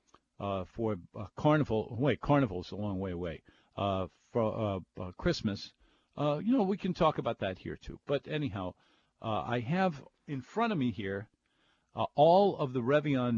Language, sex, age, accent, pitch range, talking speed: English, male, 50-69, American, 105-135 Hz, 185 wpm